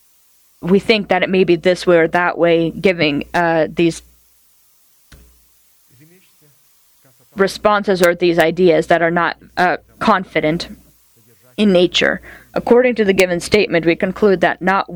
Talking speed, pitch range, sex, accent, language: 135 wpm, 165-200 Hz, female, American, English